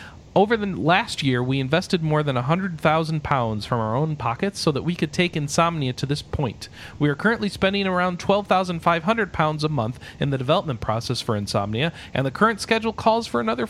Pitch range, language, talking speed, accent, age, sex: 125-170 Hz, English, 190 wpm, American, 40-59, male